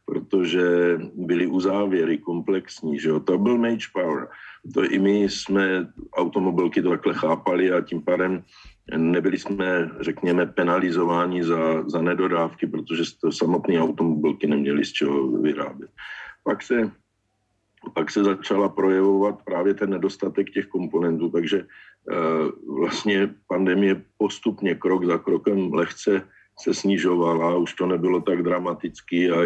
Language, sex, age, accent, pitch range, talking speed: Czech, male, 50-69, native, 85-100 Hz, 130 wpm